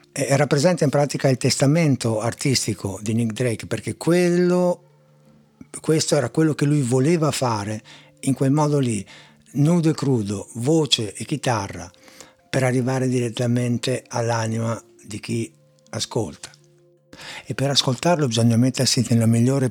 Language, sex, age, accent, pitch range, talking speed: Italian, male, 60-79, native, 110-135 Hz, 130 wpm